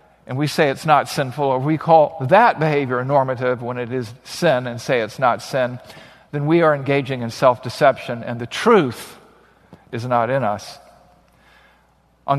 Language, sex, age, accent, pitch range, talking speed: English, male, 50-69, American, 135-180 Hz, 170 wpm